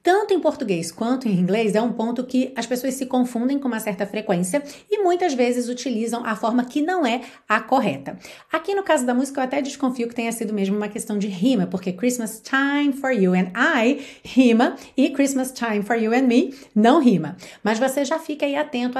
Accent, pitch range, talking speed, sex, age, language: Brazilian, 210-285 Hz, 215 wpm, female, 30-49, Portuguese